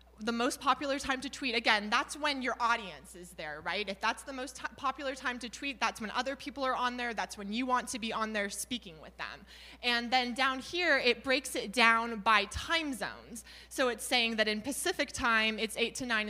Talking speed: 230 wpm